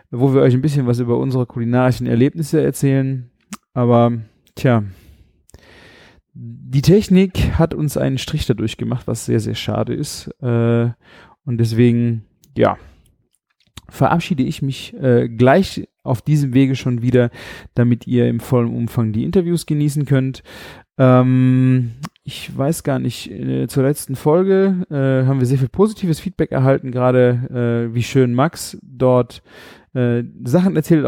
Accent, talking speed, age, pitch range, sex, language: German, 130 wpm, 30-49, 120-155 Hz, male, German